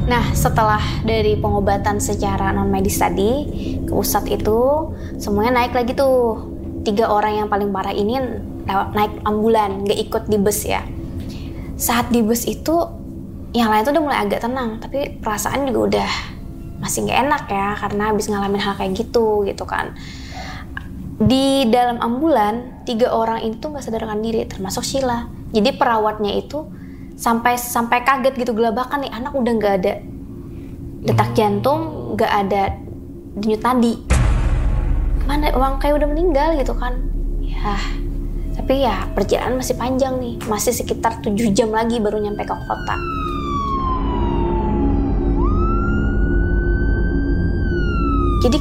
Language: Indonesian